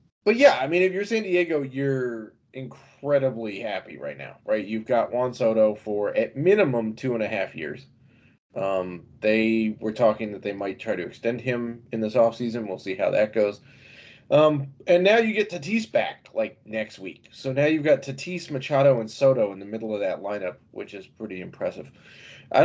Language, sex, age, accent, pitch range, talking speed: English, male, 20-39, American, 110-140 Hz, 195 wpm